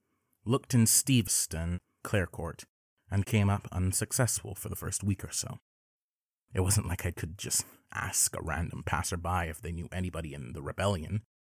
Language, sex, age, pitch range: English, male, 30-49, 90-115 Hz